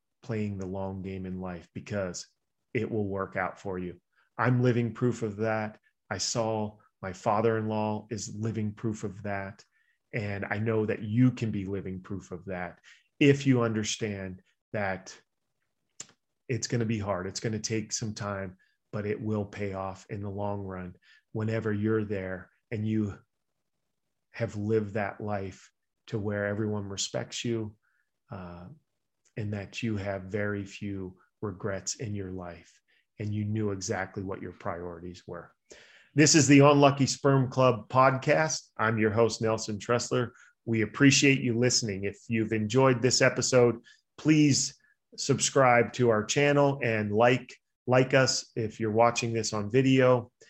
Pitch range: 100-125 Hz